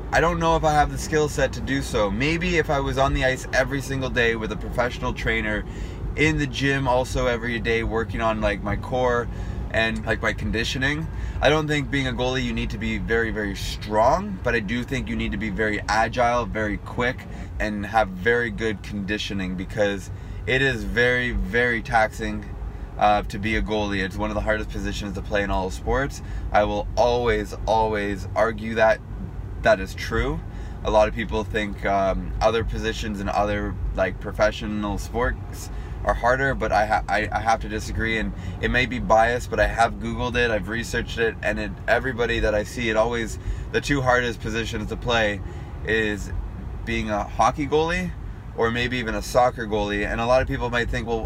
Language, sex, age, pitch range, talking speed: English, male, 20-39, 100-120 Hz, 200 wpm